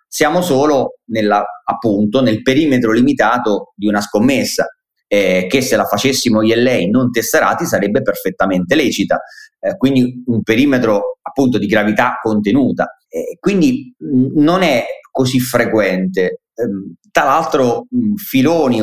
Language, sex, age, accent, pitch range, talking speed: Italian, male, 30-49, native, 105-135 Hz, 130 wpm